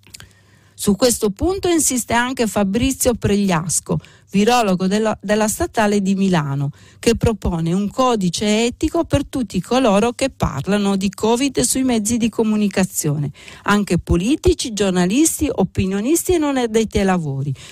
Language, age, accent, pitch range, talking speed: Italian, 50-69, native, 175-235 Hz, 130 wpm